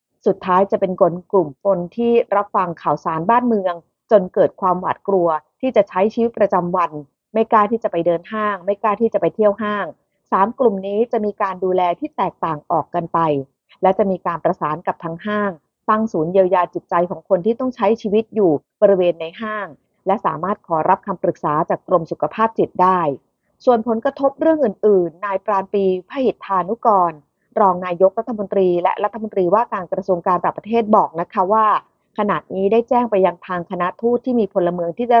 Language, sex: Thai, female